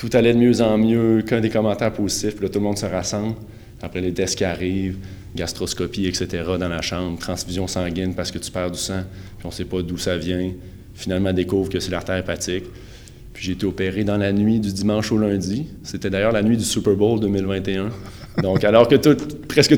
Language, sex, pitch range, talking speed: French, male, 90-115 Hz, 220 wpm